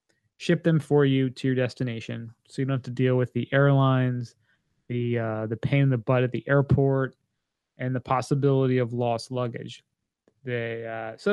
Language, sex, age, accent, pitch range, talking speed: English, male, 20-39, American, 120-145 Hz, 185 wpm